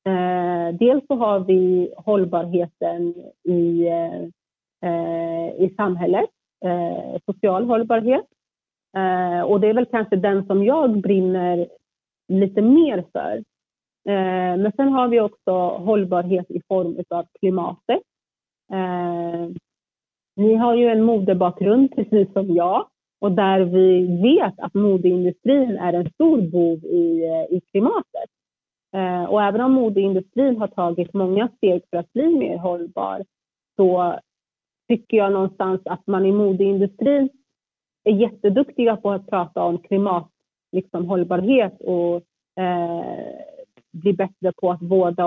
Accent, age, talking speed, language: native, 30-49, 120 wpm, Swedish